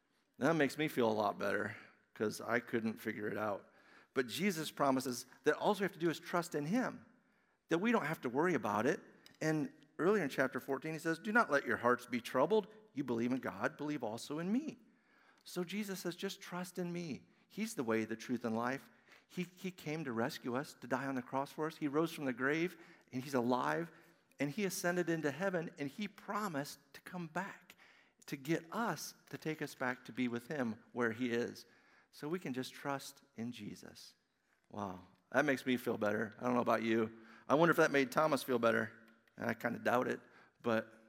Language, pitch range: English, 125-175 Hz